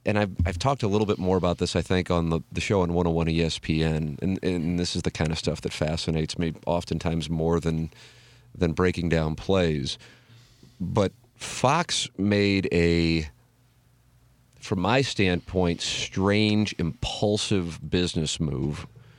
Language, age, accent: English, 40-59, American